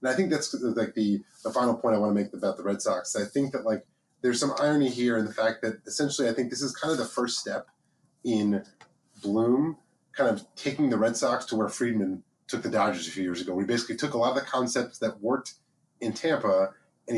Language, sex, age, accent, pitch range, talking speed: English, male, 30-49, American, 105-125 Hz, 245 wpm